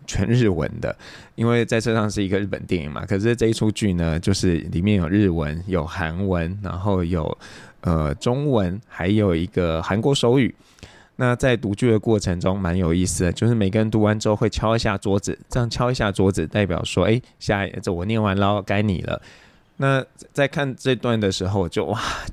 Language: Chinese